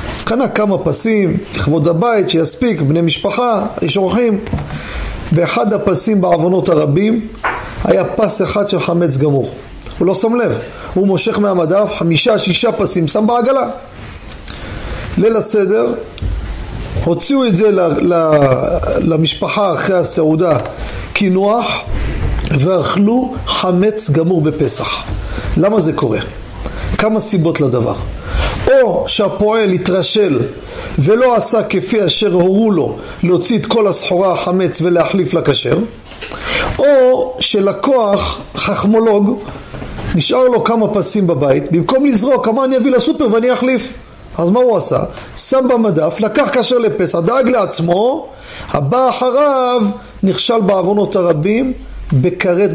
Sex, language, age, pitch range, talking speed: male, Hebrew, 40-59, 165-225 Hz, 110 wpm